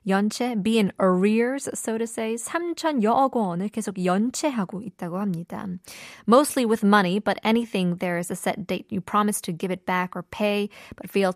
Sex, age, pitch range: female, 20-39, 185-240 Hz